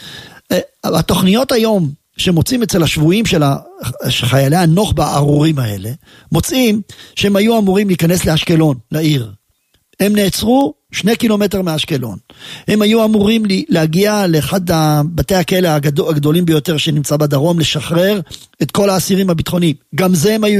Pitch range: 140-200 Hz